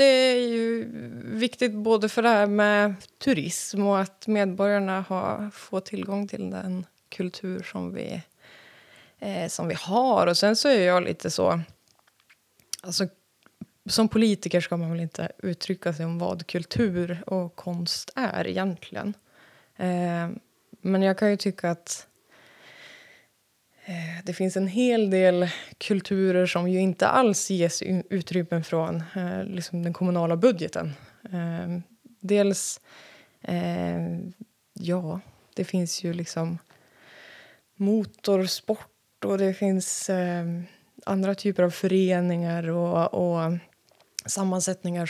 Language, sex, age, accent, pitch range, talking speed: Swedish, female, 20-39, native, 175-200 Hz, 115 wpm